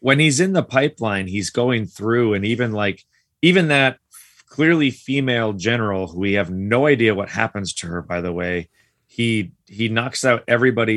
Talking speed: 175 wpm